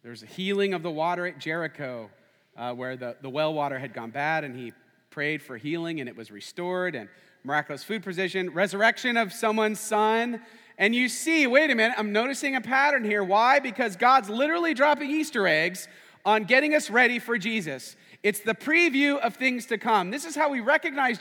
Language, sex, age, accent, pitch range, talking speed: English, male, 40-59, American, 180-240 Hz, 200 wpm